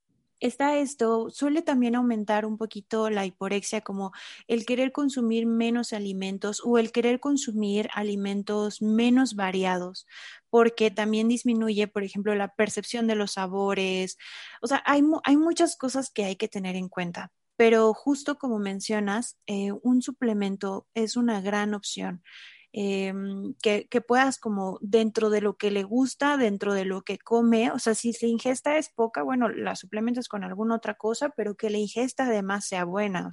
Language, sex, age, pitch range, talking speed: Spanish, female, 30-49, 205-240 Hz, 170 wpm